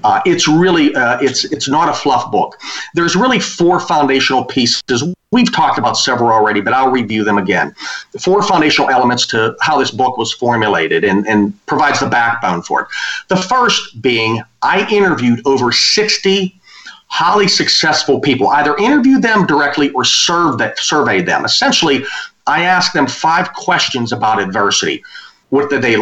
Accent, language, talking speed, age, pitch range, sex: American, English, 165 wpm, 40-59, 135-195 Hz, male